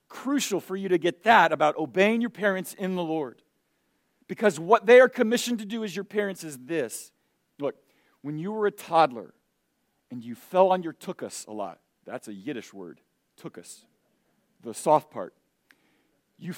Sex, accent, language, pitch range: male, American, English, 185-245 Hz